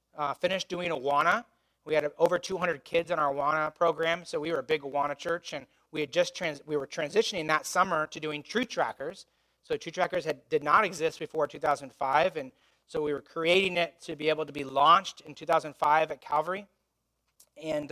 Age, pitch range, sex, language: 30-49, 140-175 Hz, male, English